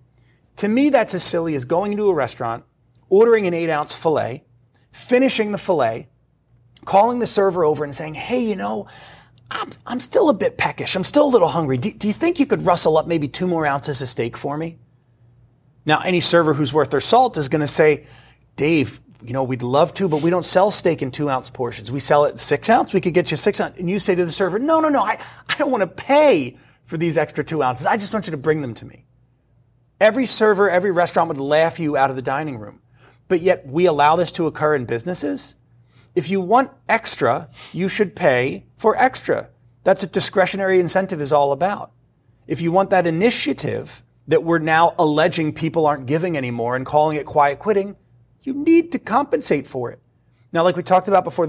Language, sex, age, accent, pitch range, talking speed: English, male, 30-49, American, 135-190 Hz, 220 wpm